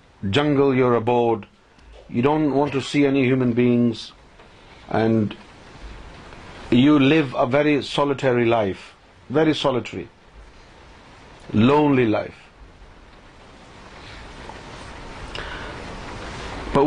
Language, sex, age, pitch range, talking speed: Urdu, male, 50-69, 110-145 Hz, 80 wpm